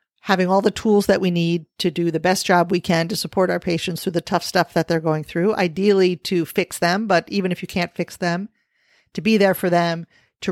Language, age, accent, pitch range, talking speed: English, 40-59, American, 170-205 Hz, 245 wpm